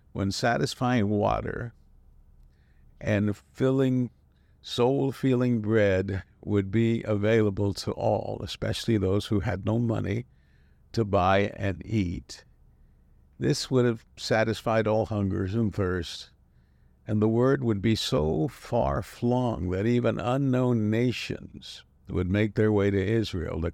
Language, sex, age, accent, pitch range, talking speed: English, male, 60-79, American, 70-110 Hz, 120 wpm